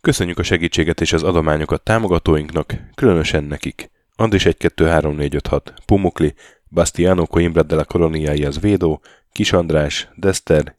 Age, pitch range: 10-29, 80-95 Hz